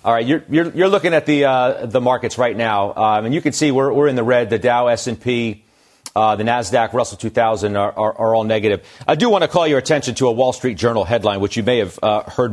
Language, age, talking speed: English, 40-59, 275 wpm